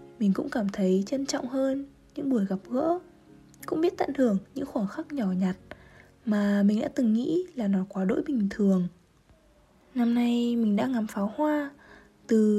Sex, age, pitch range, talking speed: female, 20-39, 205-280 Hz, 185 wpm